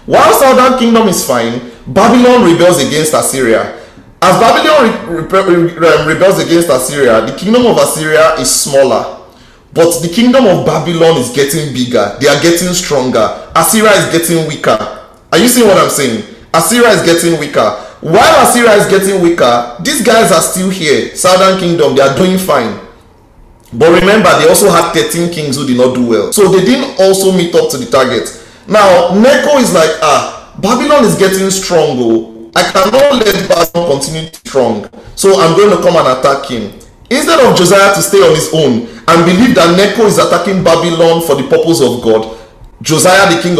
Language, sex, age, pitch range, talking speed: English, male, 30-49, 150-200 Hz, 180 wpm